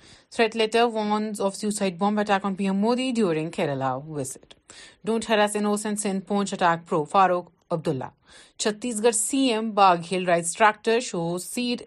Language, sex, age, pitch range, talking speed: Urdu, female, 30-49, 170-220 Hz, 150 wpm